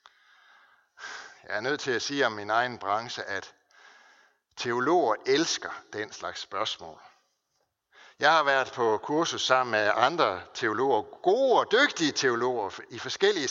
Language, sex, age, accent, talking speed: Danish, male, 60-79, native, 140 wpm